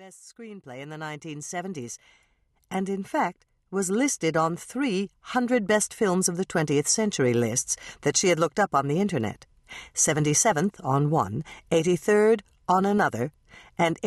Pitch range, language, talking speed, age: 145-205 Hz, English, 145 wpm, 60-79